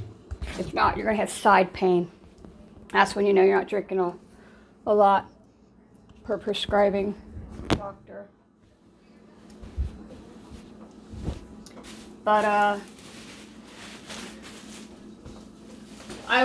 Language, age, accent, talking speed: English, 40-59, American, 90 wpm